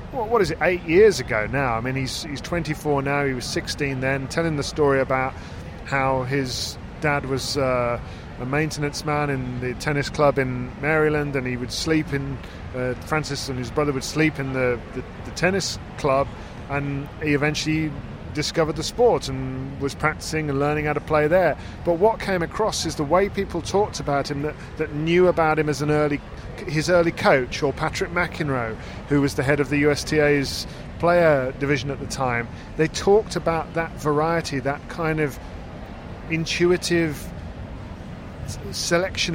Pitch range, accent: 130-160 Hz, British